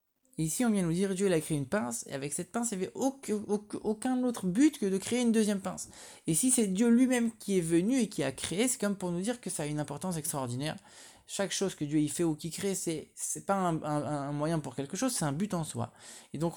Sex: male